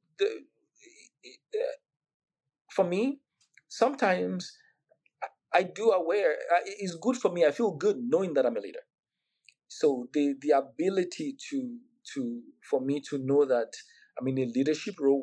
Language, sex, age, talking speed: English, male, 40-59, 150 wpm